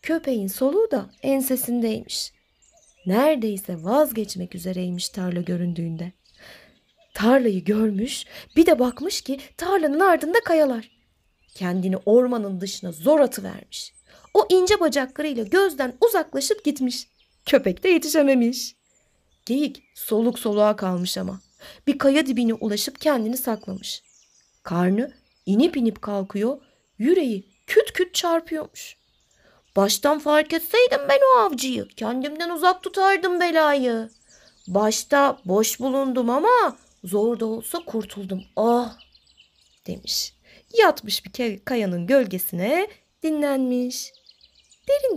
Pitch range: 200-300 Hz